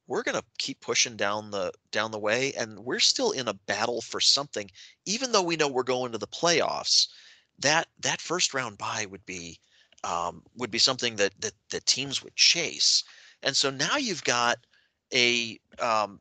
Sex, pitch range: male, 105-135 Hz